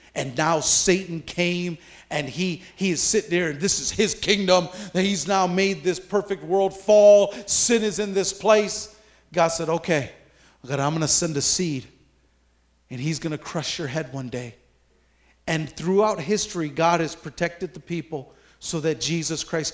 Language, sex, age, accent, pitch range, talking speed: English, male, 40-59, American, 145-185 Hz, 180 wpm